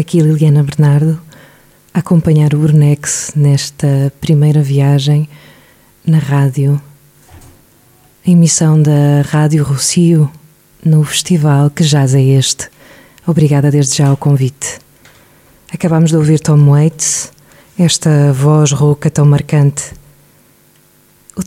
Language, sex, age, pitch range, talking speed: Portuguese, female, 20-39, 145-165 Hz, 110 wpm